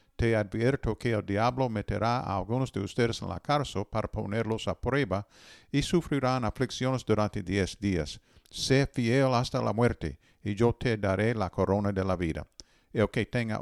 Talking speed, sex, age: 175 wpm, male, 50-69